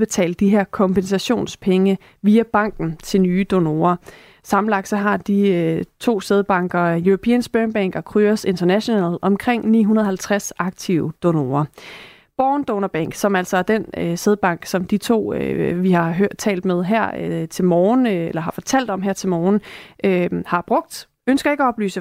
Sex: female